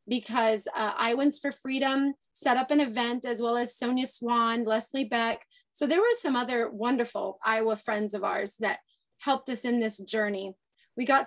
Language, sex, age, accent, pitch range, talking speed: English, female, 30-49, American, 230-315 Hz, 180 wpm